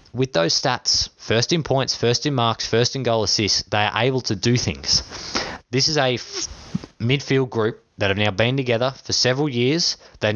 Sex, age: male, 20-39